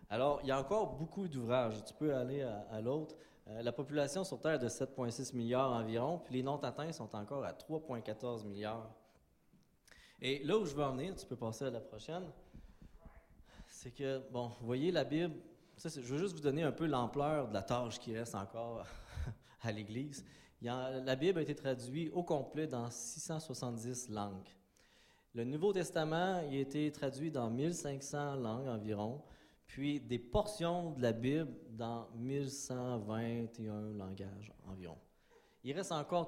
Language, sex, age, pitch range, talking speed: French, male, 30-49, 115-145 Hz, 175 wpm